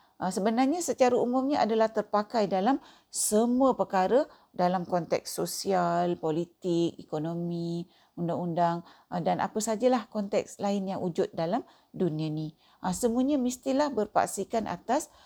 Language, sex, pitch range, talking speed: Malay, female, 170-235 Hz, 110 wpm